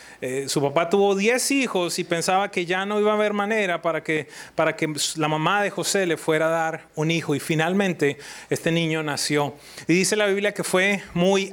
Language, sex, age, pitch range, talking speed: English, male, 30-49, 155-200 Hz, 210 wpm